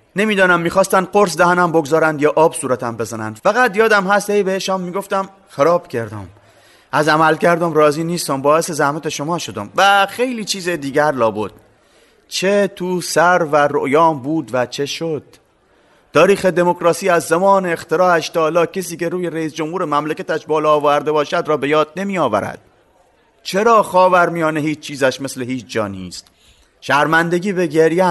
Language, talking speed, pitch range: Persian, 145 wpm, 145-180 Hz